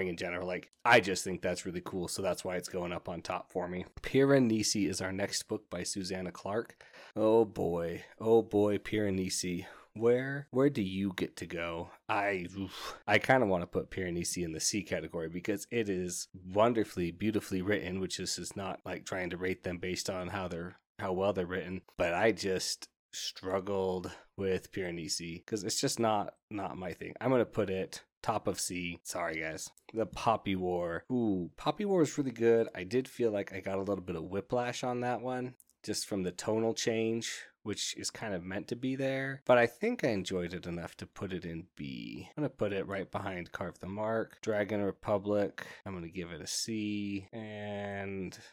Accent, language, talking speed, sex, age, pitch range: American, English, 205 wpm, male, 20-39, 90-110 Hz